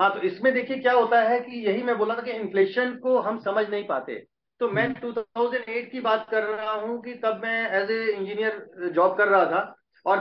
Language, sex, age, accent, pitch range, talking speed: Hindi, male, 40-59, native, 205-235 Hz, 225 wpm